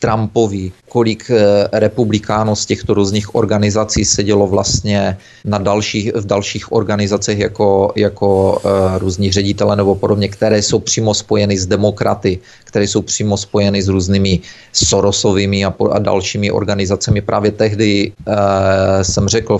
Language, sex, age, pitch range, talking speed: Czech, male, 30-49, 100-110 Hz, 130 wpm